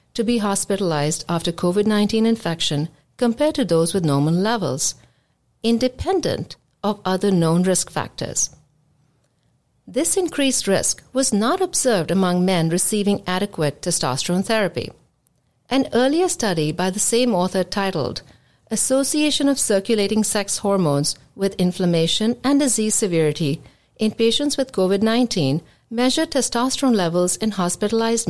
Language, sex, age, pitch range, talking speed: English, female, 50-69, 170-230 Hz, 120 wpm